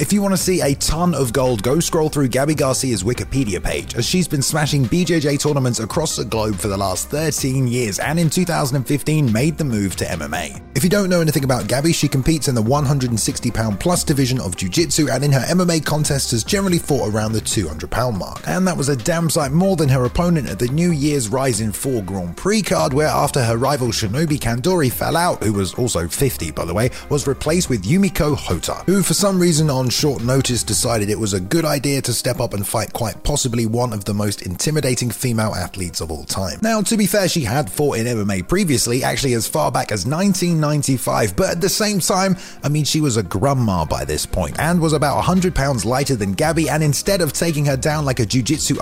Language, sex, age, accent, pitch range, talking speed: English, male, 30-49, British, 115-165 Hz, 225 wpm